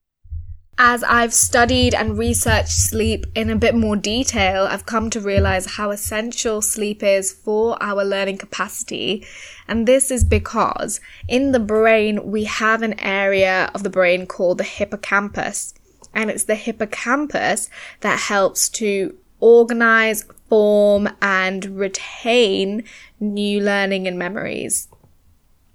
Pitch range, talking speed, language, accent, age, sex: 180-225 Hz, 130 wpm, English, British, 10-29, female